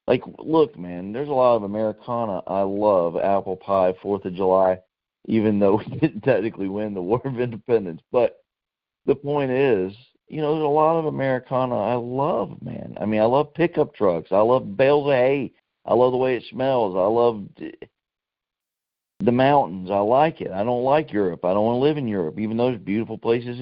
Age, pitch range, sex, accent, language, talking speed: 40-59, 95-125 Hz, male, American, English, 195 wpm